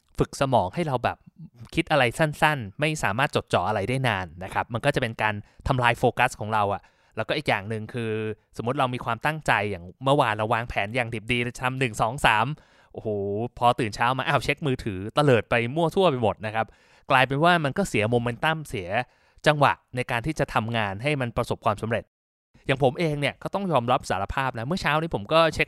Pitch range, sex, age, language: 120-160 Hz, male, 20-39, Thai